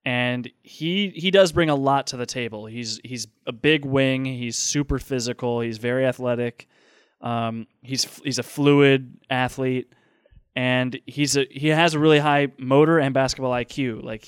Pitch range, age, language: 125-140 Hz, 20-39, English